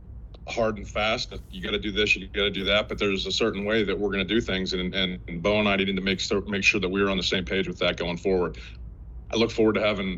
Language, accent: English, American